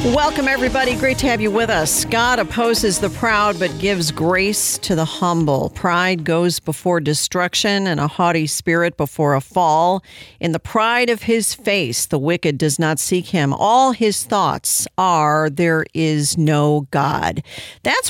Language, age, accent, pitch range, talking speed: English, 50-69, American, 155-200 Hz, 165 wpm